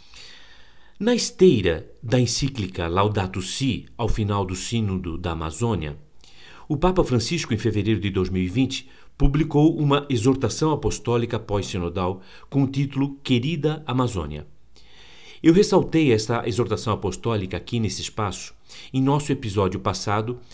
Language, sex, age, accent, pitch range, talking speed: Portuguese, male, 50-69, Brazilian, 100-140 Hz, 120 wpm